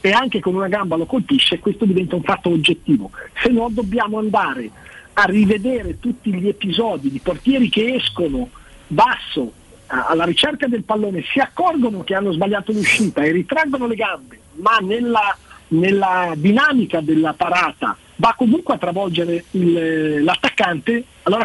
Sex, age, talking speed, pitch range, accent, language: male, 50-69, 150 wpm, 180-240 Hz, native, Italian